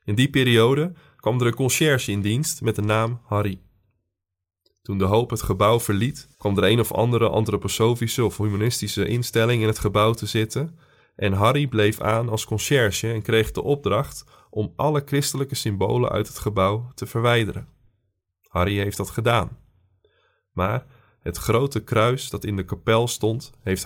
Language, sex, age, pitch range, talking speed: Dutch, male, 20-39, 105-125 Hz, 165 wpm